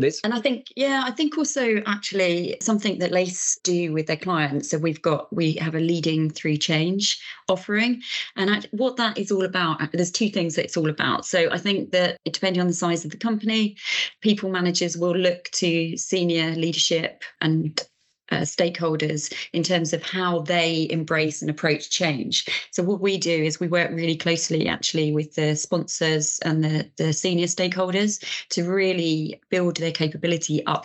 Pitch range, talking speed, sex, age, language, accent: 155-180 Hz, 180 wpm, female, 30-49, English, British